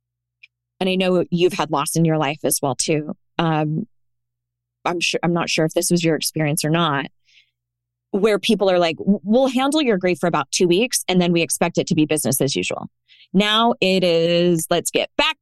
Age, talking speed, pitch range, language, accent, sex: 20-39, 205 wpm, 150-190 Hz, English, American, female